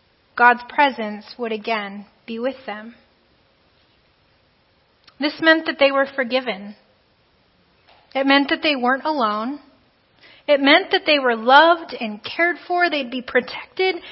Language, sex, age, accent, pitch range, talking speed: English, female, 30-49, American, 230-300 Hz, 130 wpm